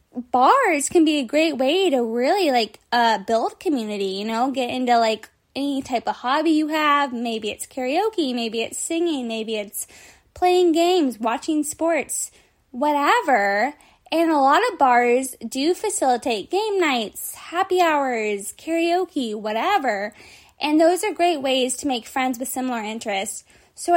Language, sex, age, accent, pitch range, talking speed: English, female, 10-29, American, 240-335 Hz, 155 wpm